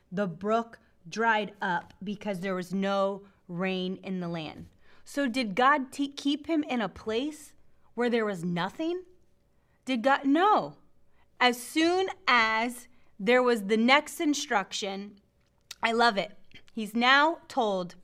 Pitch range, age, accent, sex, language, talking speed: 200-250 Hz, 30-49, American, female, English, 140 wpm